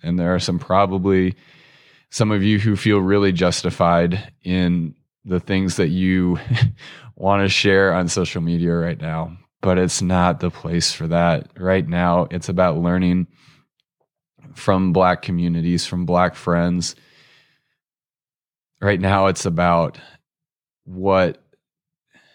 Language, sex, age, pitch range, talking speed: English, male, 20-39, 85-95 Hz, 130 wpm